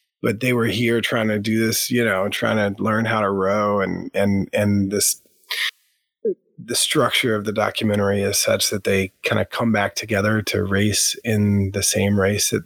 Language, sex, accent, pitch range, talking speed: English, male, American, 100-115 Hz, 195 wpm